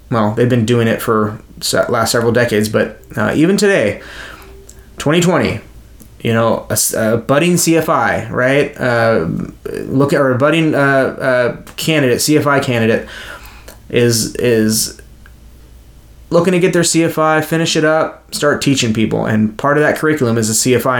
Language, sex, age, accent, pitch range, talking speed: English, male, 20-39, American, 110-155 Hz, 150 wpm